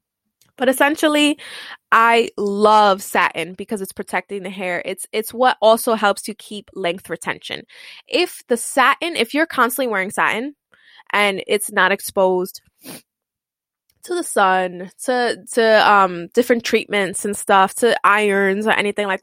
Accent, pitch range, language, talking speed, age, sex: American, 195-245 Hz, English, 145 wpm, 20-39, female